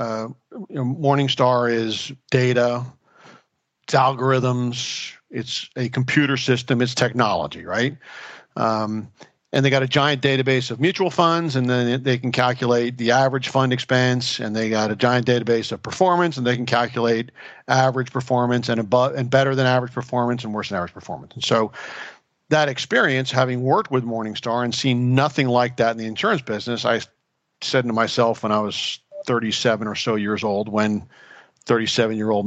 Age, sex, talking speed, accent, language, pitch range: 50-69, male, 165 wpm, American, English, 115-135 Hz